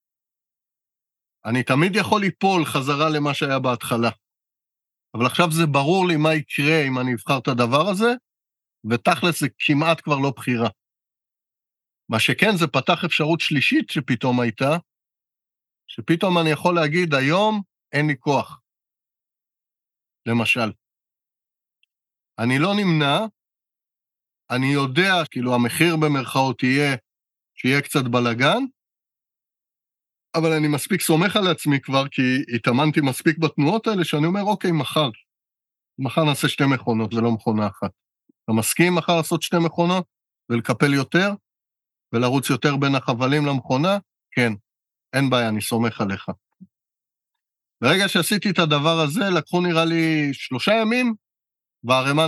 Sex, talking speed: male, 125 wpm